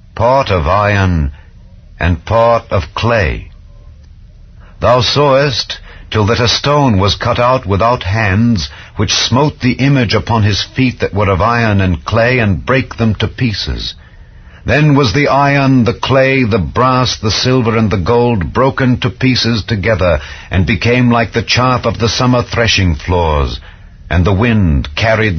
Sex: male